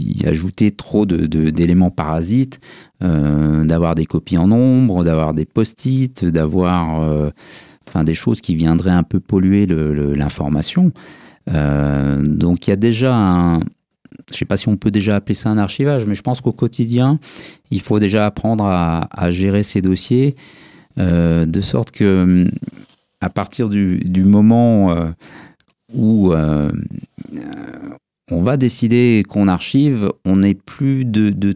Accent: French